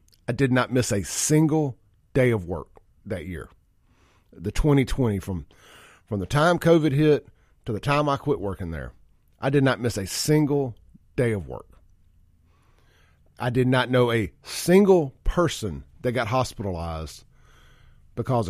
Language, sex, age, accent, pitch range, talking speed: English, male, 40-59, American, 95-145 Hz, 150 wpm